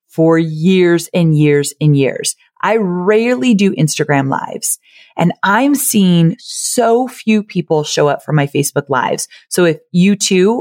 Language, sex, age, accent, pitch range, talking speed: English, female, 30-49, American, 160-225 Hz, 155 wpm